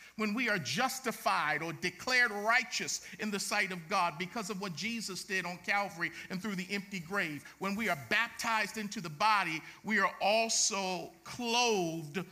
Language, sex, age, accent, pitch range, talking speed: English, male, 50-69, American, 200-250 Hz, 170 wpm